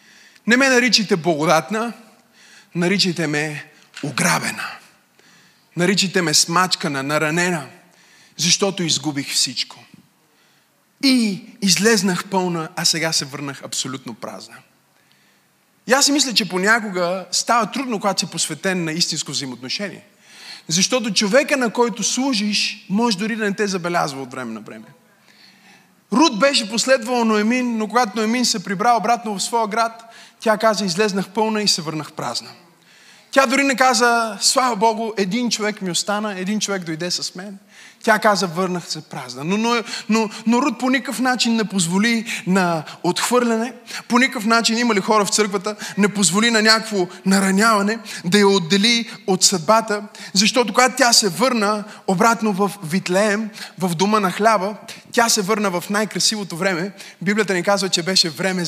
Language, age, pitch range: Bulgarian, 20-39, 185-230 Hz